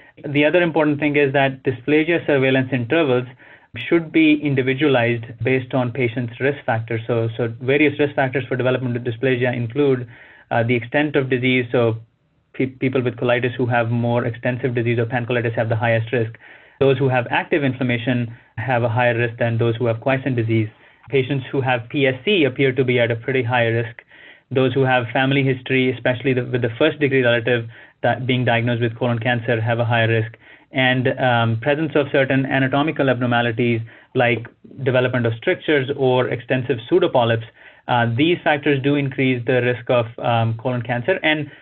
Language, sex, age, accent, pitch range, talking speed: English, male, 30-49, Indian, 120-135 Hz, 175 wpm